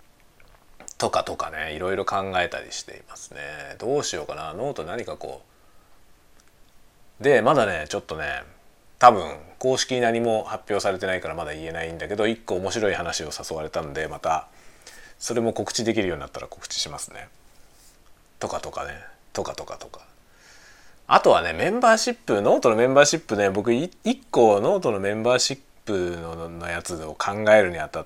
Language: Japanese